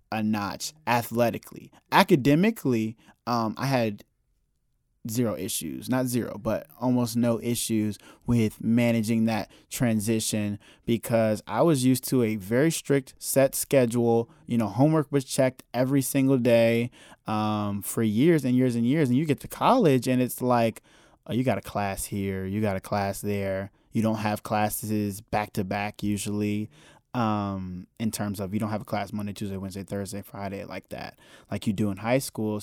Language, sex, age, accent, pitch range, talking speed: English, male, 20-39, American, 105-130 Hz, 170 wpm